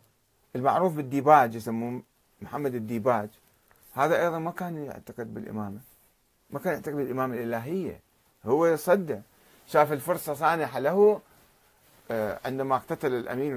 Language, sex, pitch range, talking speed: Arabic, male, 115-170 Hz, 110 wpm